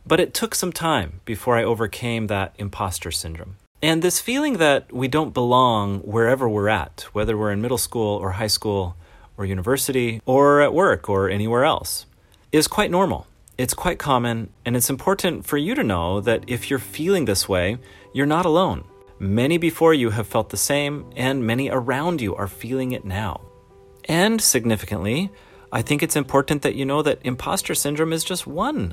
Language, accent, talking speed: English, American, 185 wpm